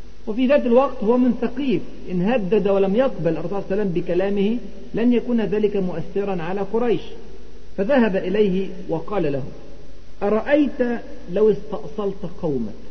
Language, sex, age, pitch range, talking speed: Arabic, male, 50-69, 180-245 Hz, 135 wpm